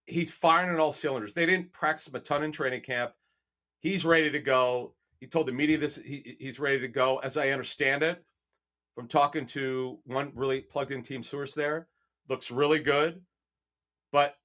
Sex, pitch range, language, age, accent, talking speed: male, 130-165 Hz, English, 40-59, American, 185 wpm